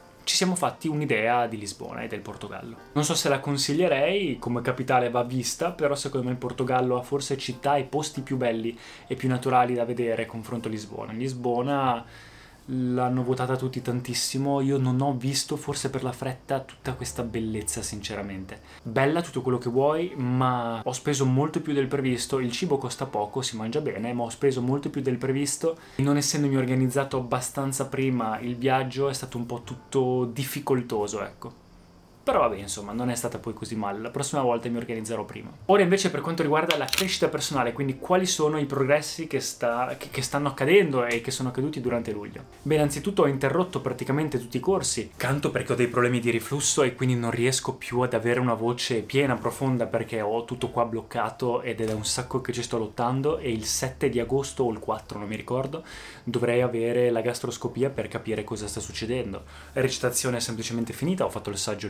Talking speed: 195 wpm